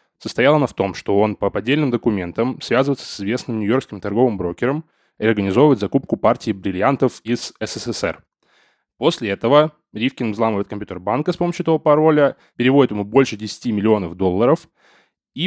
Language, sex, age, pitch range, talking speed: Russian, male, 10-29, 95-130 Hz, 150 wpm